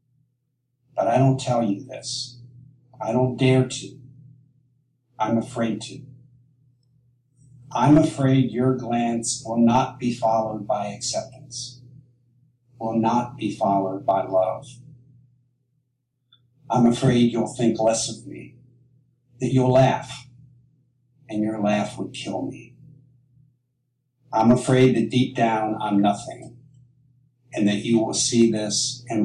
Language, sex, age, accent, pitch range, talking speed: English, male, 60-79, American, 120-130 Hz, 120 wpm